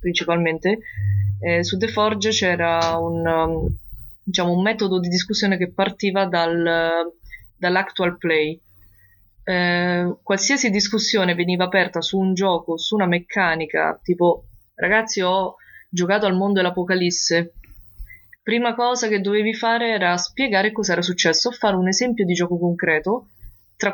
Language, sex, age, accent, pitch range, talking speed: Italian, female, 20-39, native, 170-205 Hz, 135 wpm